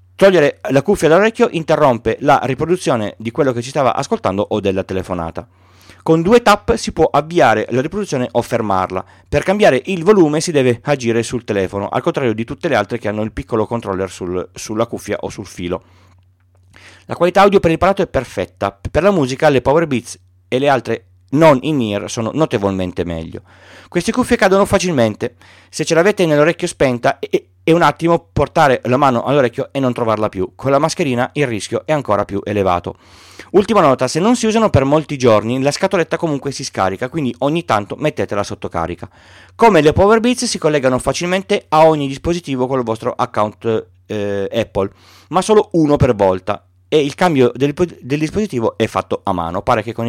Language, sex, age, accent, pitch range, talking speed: Italian, male, 30-49, native, 100-160 Hz, 190 wpm